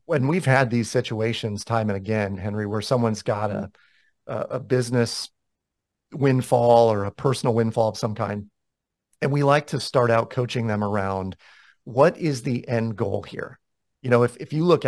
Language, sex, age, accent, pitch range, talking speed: English, male, 40-59, American, 110-135 Hz, 180 wpm